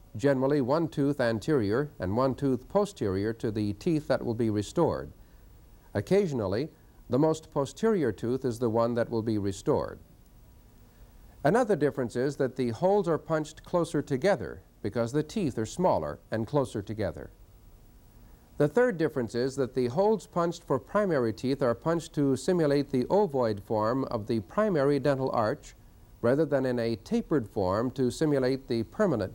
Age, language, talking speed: 60-79, English, 160 wpm